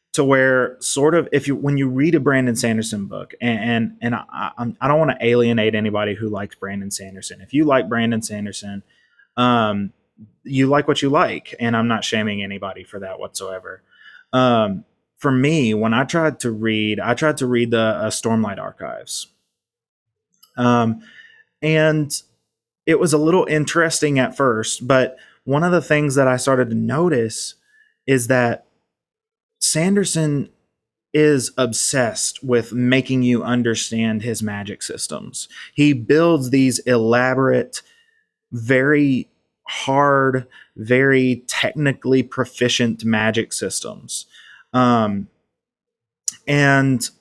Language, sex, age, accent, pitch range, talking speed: English, male, 20-39, American, 115-145 Hz, 135 wpm